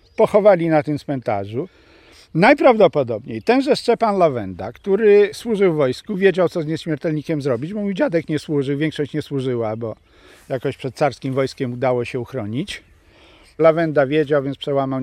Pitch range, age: 125-205 Hz, 50-69